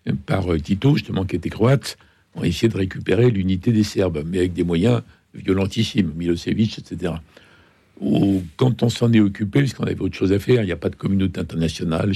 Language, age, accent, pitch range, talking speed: French, 60-79, French, 95-115 Hz, 195 wpm